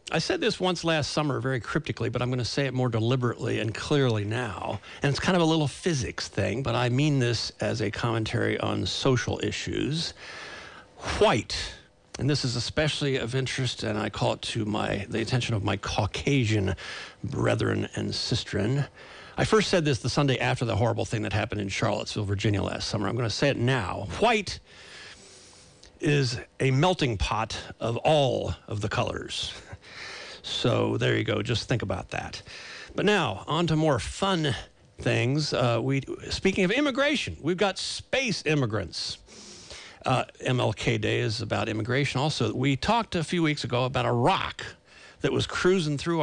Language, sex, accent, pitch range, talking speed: English, male, American, 110-145 Hz, 175 wpm